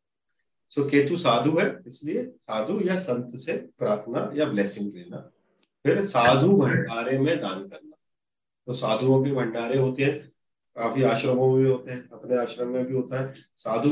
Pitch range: 115-145 Hz